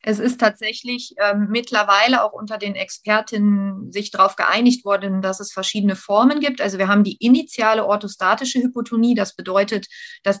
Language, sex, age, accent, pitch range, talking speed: German, female, 30-49, German, 200-240 Hz, 160 wpm